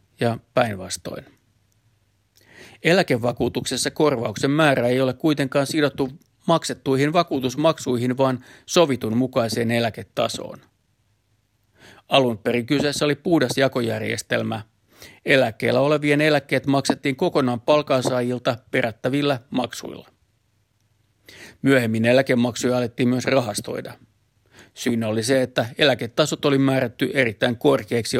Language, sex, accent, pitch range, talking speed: Finnish, male, native, 110-140 Hz, 90 wpm